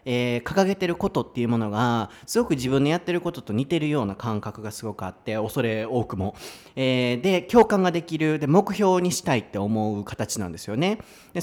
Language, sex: Japanese, male